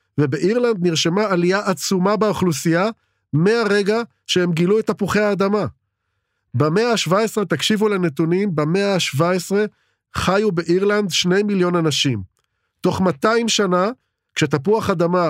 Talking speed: 105 wpm